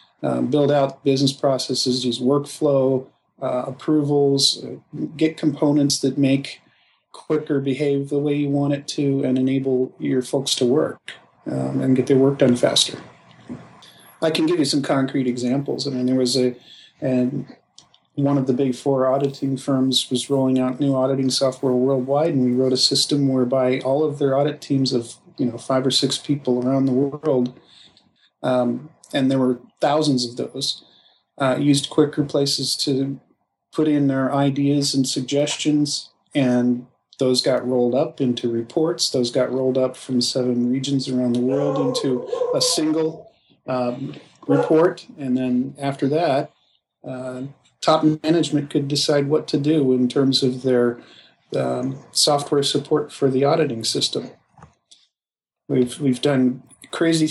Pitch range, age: 130-145 Hz, 40-59